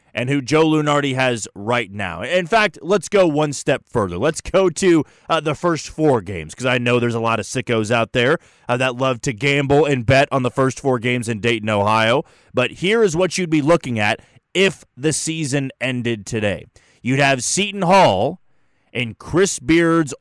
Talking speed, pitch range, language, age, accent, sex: 200 wpm, 115-150 Hz, English, 30-49, American, male